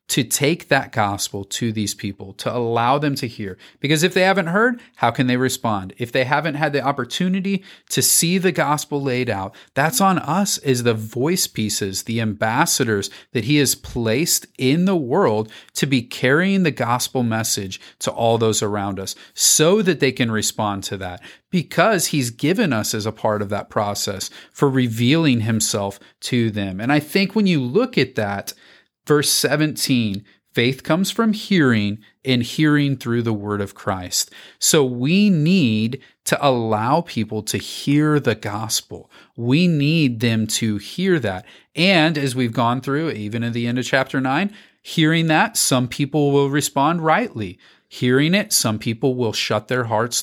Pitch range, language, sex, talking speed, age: 110-150 Hz, English, male, 175 wpm, 40-59